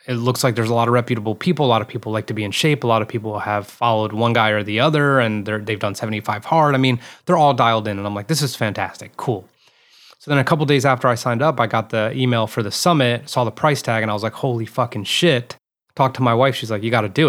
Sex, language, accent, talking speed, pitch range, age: male, English, American, 300 wpm, 105-125 Hz, 20-39